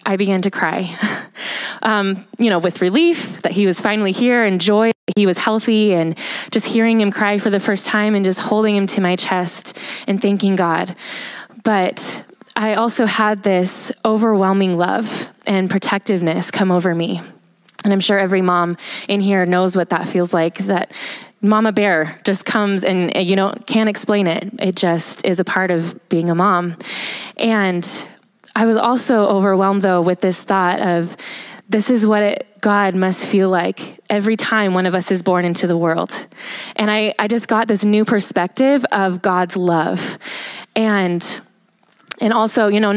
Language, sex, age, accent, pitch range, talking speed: English, female, 20-39, American, 185-215 Hz, 175 wpm